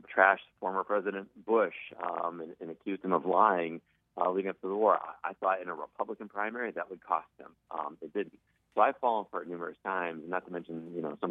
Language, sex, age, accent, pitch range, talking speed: English, male, 40-59, American, 90-115 Hz, 235 wpm